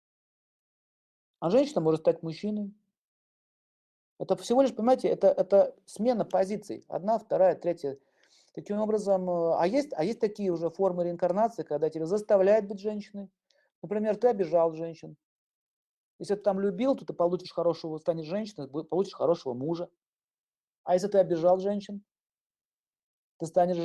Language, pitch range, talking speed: Russian, 150-205 Hz, 135 wpm